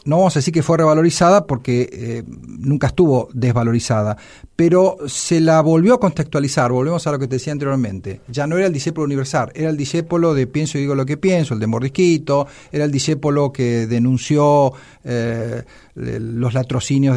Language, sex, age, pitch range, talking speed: Spanish, male, 50-69, 130-175 Hz, 180 wpm